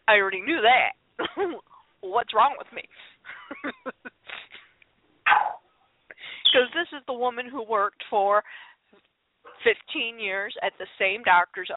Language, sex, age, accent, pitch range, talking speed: English, female, 40-59, American, 205-290 Hz, 110 wpm